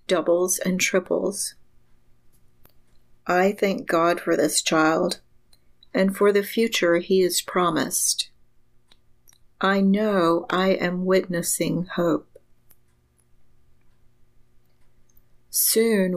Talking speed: 85 wpm